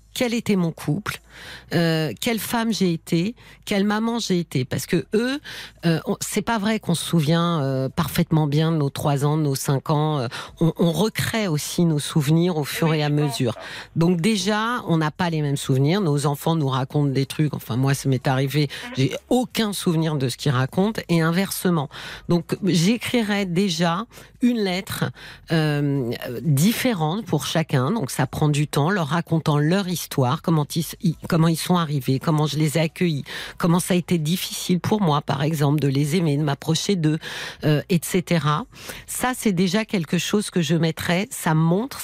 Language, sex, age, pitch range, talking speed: French, female, 40-59, 145-185 Hz, 185 wpm